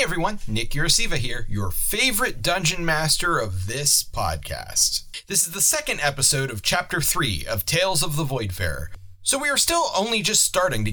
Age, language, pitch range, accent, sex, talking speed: 30-49, English, 110-175 Hz, American, male, 175 wpm